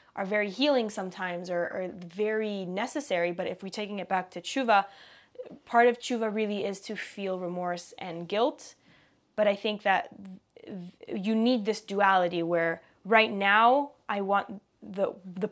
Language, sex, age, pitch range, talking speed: English, female, 20-39, 180-215 Hz, 160 wpm